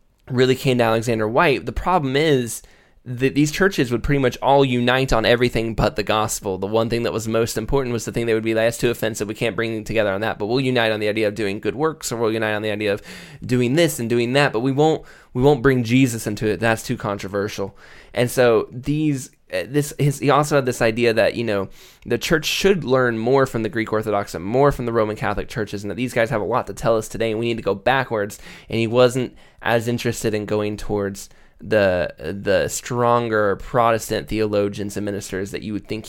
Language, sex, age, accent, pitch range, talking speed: English, male, 10-29, American, 110-135 Hz, 235 wpm